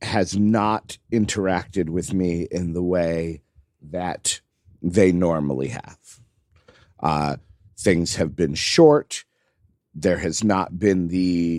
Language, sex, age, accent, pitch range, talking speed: English, male, 50-69, American, 90-115 Hz, 115 wpm